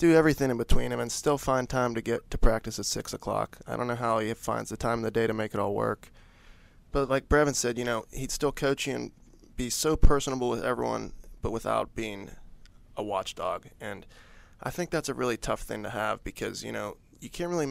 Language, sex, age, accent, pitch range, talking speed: English, male, 20-39, American, 110-130 Hz, 235 wpm